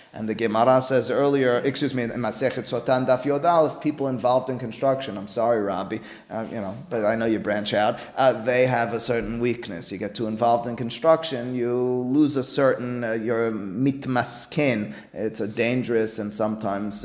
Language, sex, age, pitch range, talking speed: English, male, 30-49, 115-140 Hz, 180 wpm